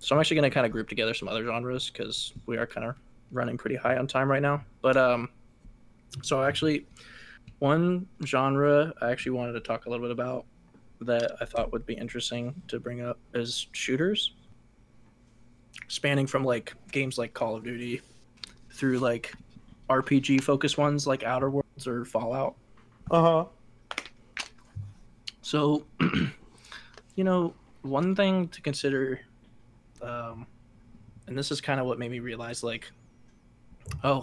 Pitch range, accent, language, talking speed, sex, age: 120-140 Hz, American, English, 155 wpm, male, 20-39